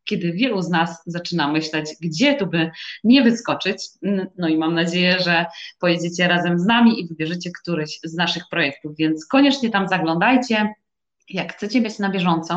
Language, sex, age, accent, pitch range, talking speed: Polish, female, 20-39, native, 175-230 Hz, 165 wpm